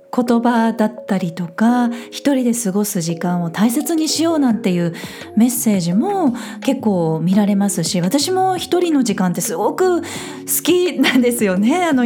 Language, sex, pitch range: Japanese, female, 185-260 Hz